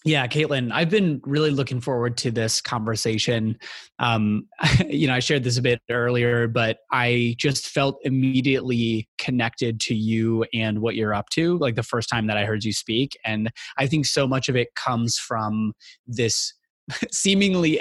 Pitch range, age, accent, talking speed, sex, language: 110-130 Hz, 20-39, American, 175 wpm, male, English